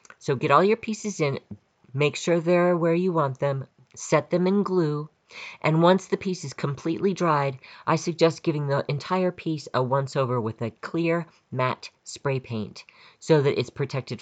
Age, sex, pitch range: 40-59, female, 125-165 Hz